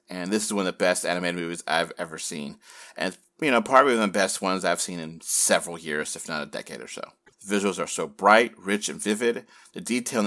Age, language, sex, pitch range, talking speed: 30-49, English, male, 95-125 Hz, 250 wpm